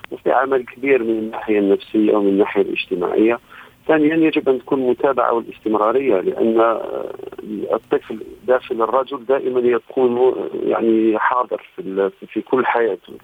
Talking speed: 120 wpm